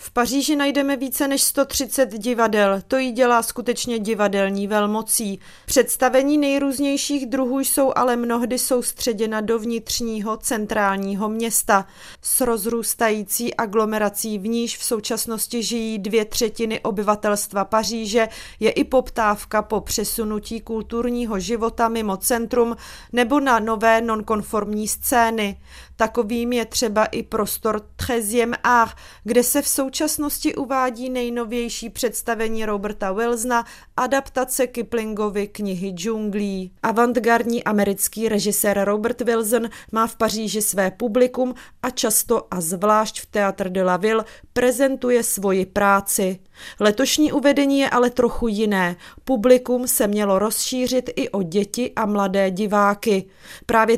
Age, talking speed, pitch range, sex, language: 30-49, 120 wpm, 210-245 Hz, female, Czech